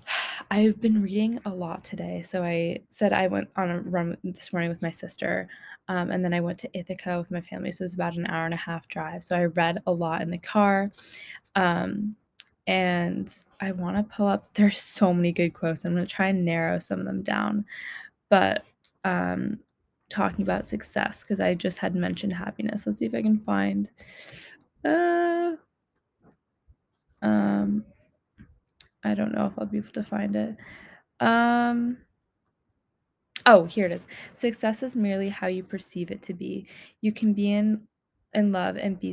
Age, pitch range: 10-29, 170-205 Hz